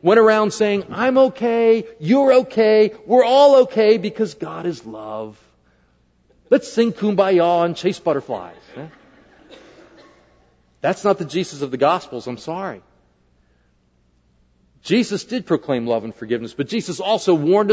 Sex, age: male, 50-69